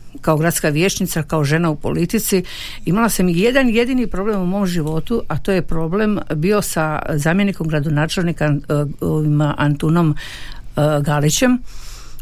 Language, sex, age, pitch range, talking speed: Croatian, female, 50-69, 155-210 Hz, 130 wpm